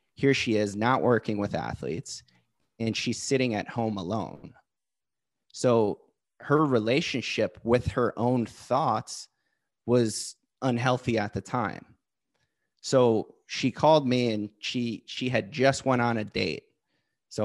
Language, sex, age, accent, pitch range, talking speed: English, male, 30-49, American, 105-130 Hz, 135 wpm